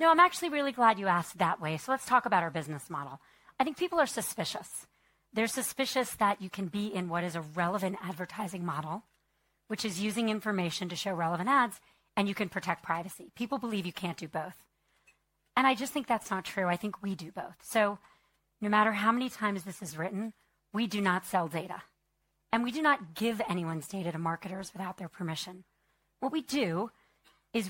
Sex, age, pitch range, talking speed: female, 40-59, 175-225 Hz, 205 wpm